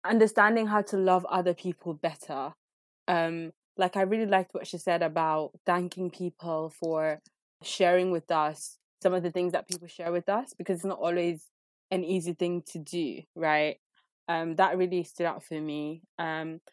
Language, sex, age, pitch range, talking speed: English, female, 20-39, 165-195 Hz, 175 wpm